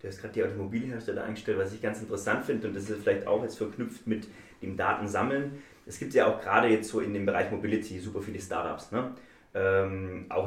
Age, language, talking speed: 30-49, German, 220 wpm